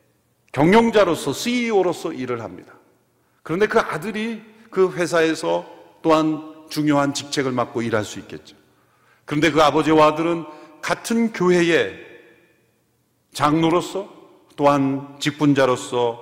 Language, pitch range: Korean, 140-215 Hz